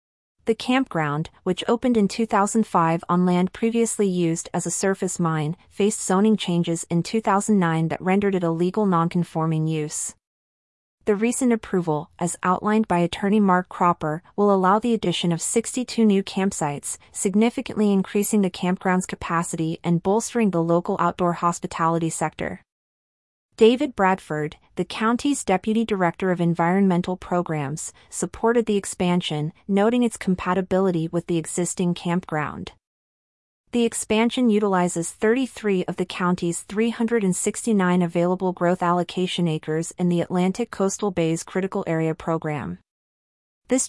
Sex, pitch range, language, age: female, 170-205 Hz, English, 30-49